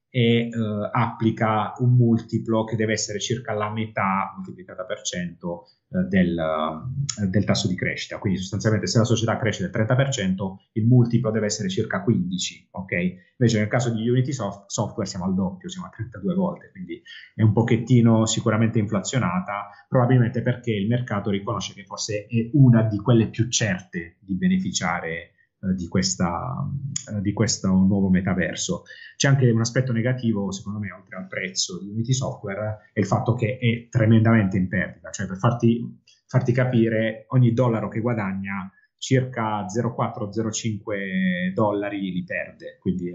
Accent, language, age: native, Italian, 30-49